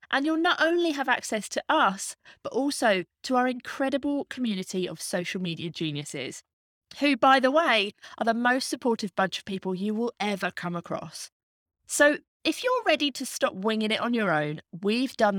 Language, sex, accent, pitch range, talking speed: English, female, British, 180-255 Hz, 185 wpm